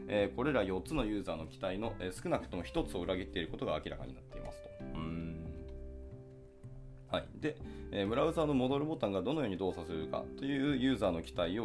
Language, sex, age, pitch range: Japanese, male, 20-39, 80-110 Hz